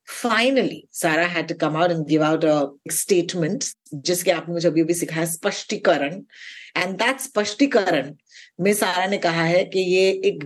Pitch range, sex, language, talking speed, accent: 170-250 Hz, female, Hindi, 145 wpm, native